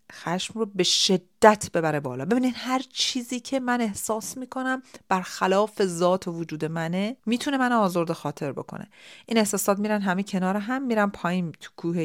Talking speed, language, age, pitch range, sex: 170 wpm, Persian, 40-59, 170-235 Hz, female